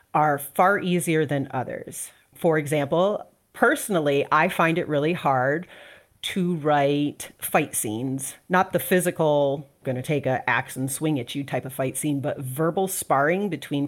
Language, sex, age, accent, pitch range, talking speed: English, female, 40-59, American, 145-190 Hz, 155 wpm